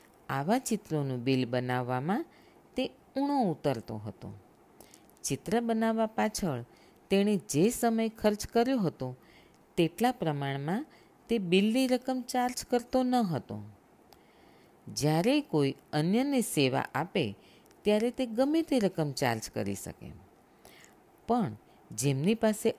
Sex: female